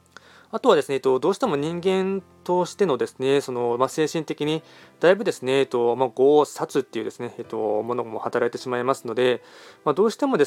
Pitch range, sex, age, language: 125-160 Hz, male, 20-39, Japanese